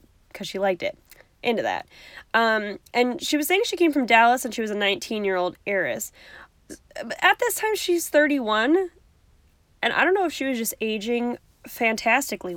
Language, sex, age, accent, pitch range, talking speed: English, female, 10-29, American, 195-285 Hz, 185 wpm